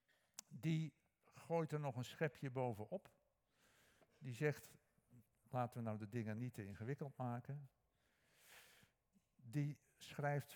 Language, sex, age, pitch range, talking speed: Dutch, male, 60-79, 120-155 Hz, 115 wpm